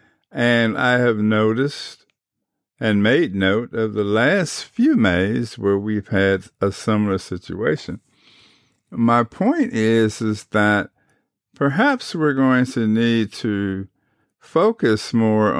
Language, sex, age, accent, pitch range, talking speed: English, male, 50-69, American, 95-115 Hz, 120 wpm